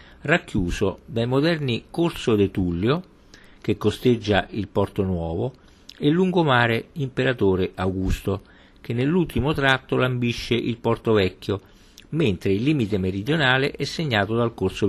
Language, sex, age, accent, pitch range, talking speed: Italian, male, 50-69, native, 95-125 Hz, 120 wpm